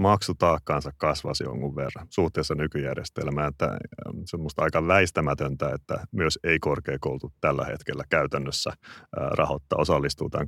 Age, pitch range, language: 30-49, 75-90 Hz, Finnish